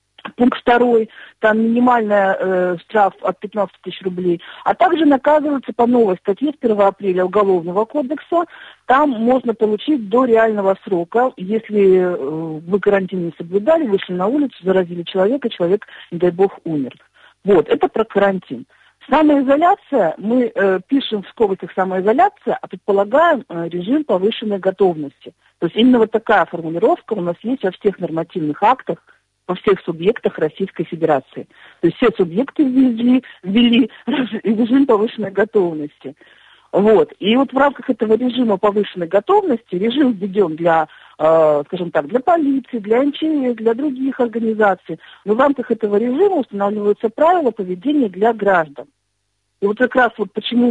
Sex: female